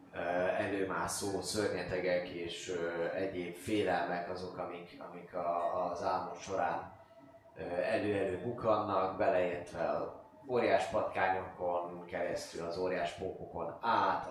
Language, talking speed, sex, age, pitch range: Hungarian, 95 wpm, male, 20-39, 90-115 Hz